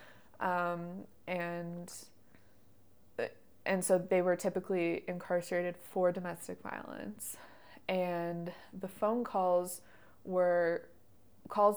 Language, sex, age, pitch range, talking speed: English, female, 20-39, 165-185 Hz, 85 wpm